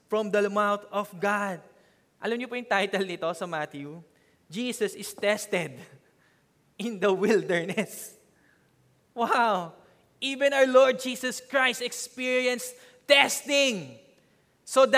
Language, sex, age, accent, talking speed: English, male, 20-39, Filipino, 110 wpm